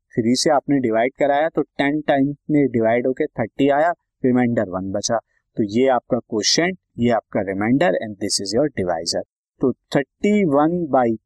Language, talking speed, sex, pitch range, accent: Hindi, 160 wpm, male, 120-175 Hz, native